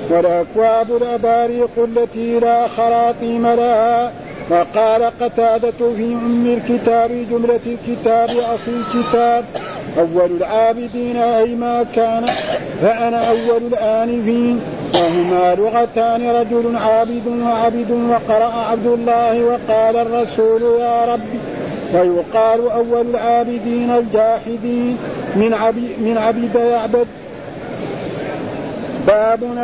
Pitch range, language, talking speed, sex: 225-240 Hz, Arabic, 95 wpm, male